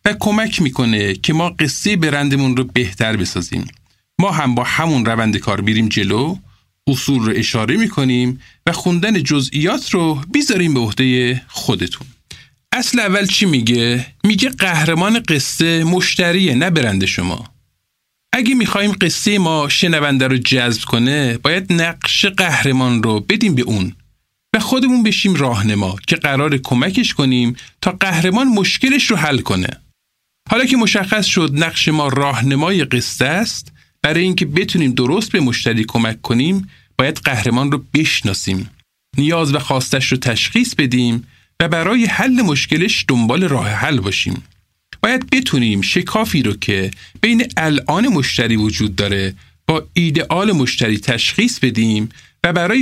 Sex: male